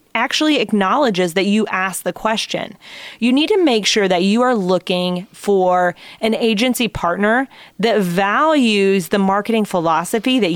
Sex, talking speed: female, 150 wpm